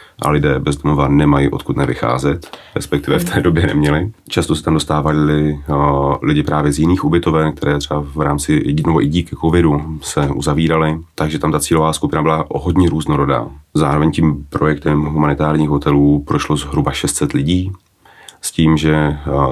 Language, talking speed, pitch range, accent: Czech, 165 wpm, 70-80 Hz, native